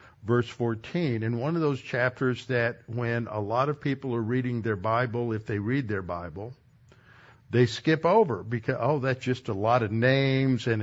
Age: 60-79